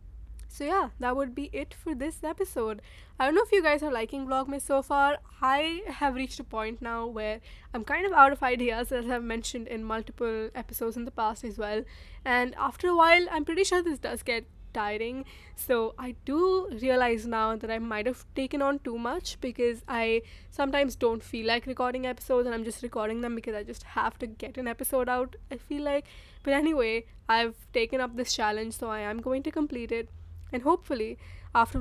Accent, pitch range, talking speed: Indian, 225-275 Hz, 210 wpm